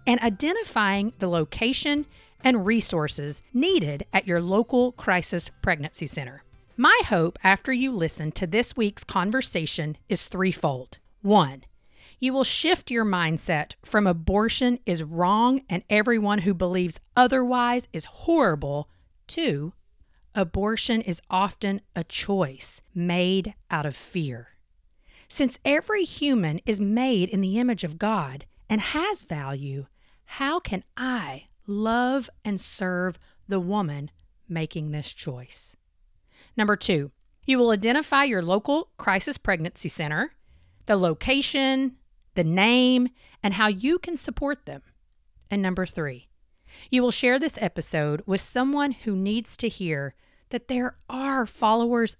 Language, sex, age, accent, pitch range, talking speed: English, female, 40-59, American, 160-245 Hz, 130 wpm